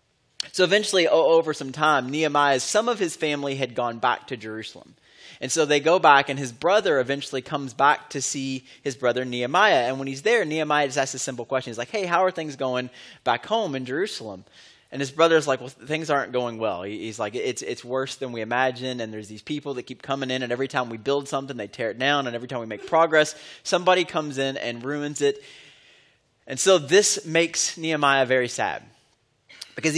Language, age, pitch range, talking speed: English, 20-39, 125-155 Hz, 215 wpm